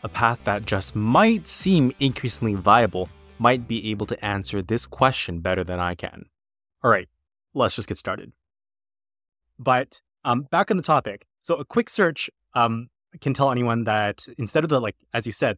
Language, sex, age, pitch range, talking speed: English, male, 20-39, 100-120 Hz, 180 wpm